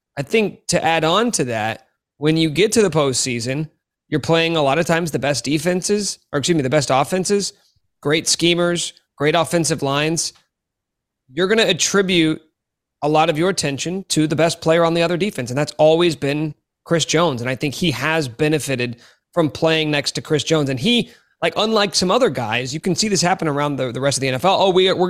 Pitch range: 140-175 Hz